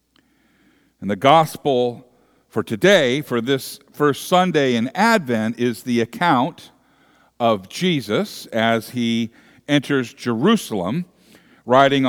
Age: 50-69